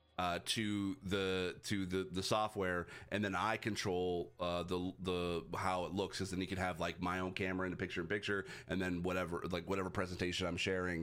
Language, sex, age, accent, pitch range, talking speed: English, male, 30-49, American, 90-110 Hz, 210 wpm